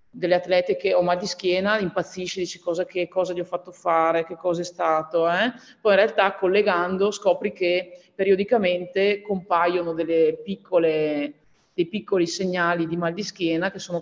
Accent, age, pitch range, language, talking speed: native, 30-49, 160-180 Hz, Italian, 165 wpm